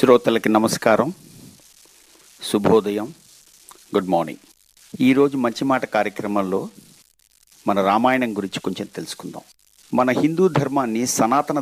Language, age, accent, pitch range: Telugu, 50-69, native, 110-140 Hz